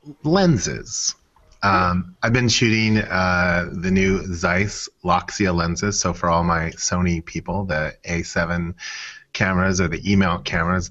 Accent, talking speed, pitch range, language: American, 130 wpm, 85-95 Hz, English